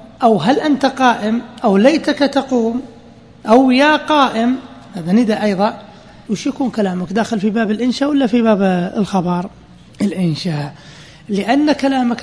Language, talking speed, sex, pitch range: Arabic, 130 wpm, male, 190-250 Hz